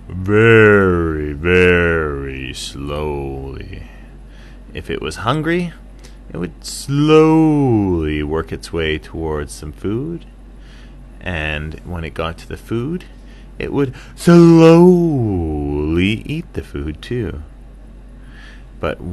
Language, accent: English, American